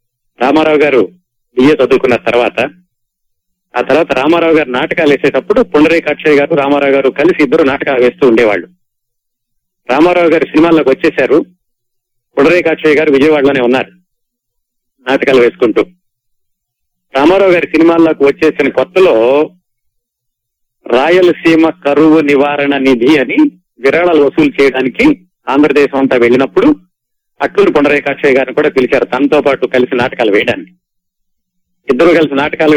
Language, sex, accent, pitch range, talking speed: Telugu, male, native, 125-160 Hz, 110 wpm